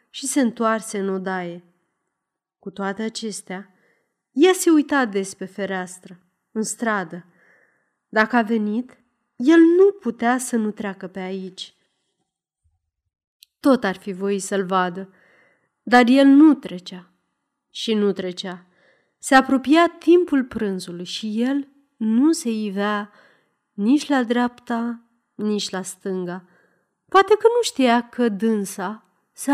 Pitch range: 190-260 Hz